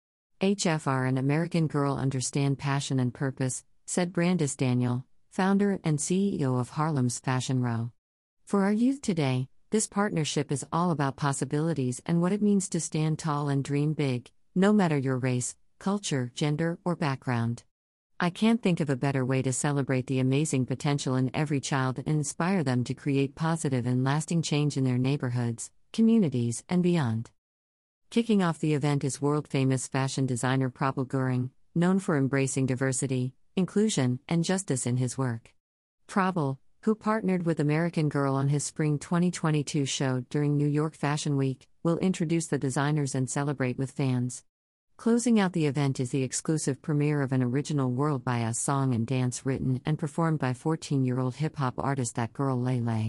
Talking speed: 165 wpm